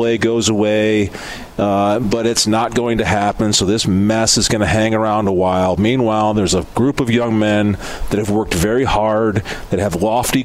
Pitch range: 110-130 Hz